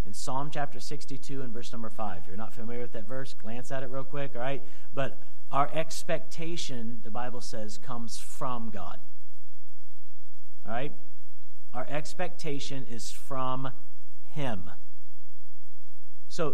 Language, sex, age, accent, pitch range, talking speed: English, male, 40-59, American, 130-180 Hz, 125 wpm